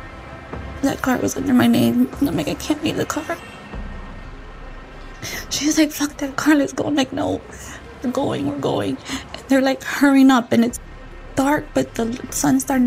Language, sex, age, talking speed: English, female, 20-39, 185 wpm